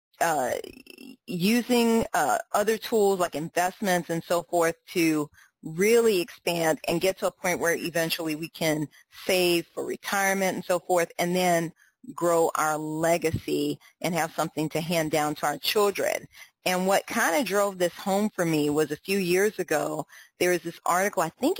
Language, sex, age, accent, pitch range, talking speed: English, female, 40-59, American, 170-265 Hz, 170 wpm